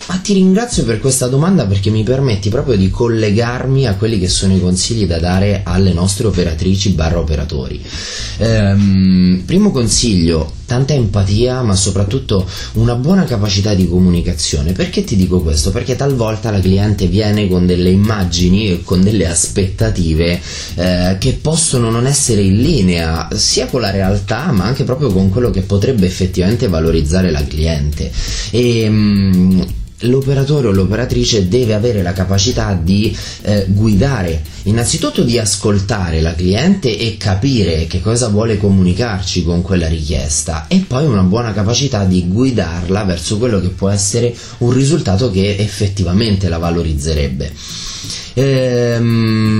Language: Italian